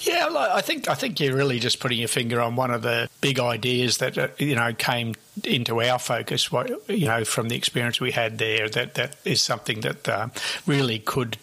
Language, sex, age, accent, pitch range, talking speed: English, male, 60-79, Australian, 120-135 Hz, 215 wpm